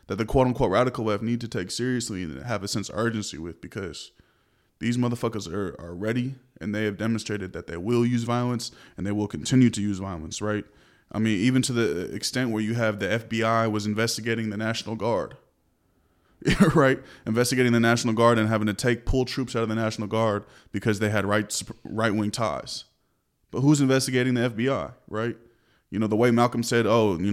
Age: 20-39